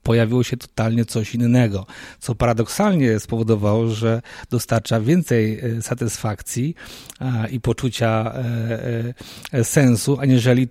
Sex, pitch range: male, 115-130 Hz